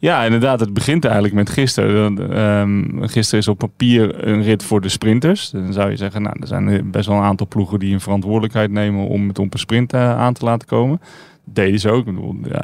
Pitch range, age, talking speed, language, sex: 100-125 Hz, 30-49, 220 wpm, Dutch, male